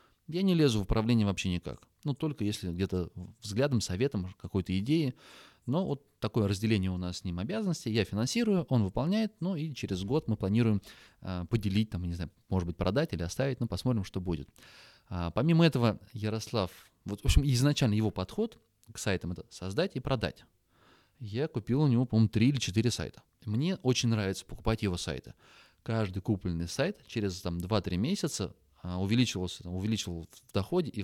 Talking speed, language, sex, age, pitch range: 180 wpm, Russian, male, 20-39, 95-125 Hz